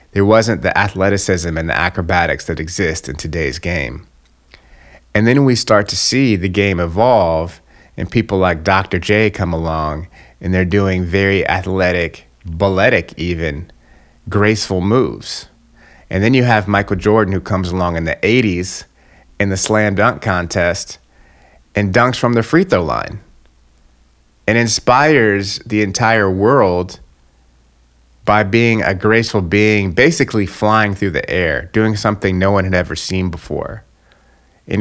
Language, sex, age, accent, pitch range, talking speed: English, male, 30-49, American, 80-105 Hz, 145 wpm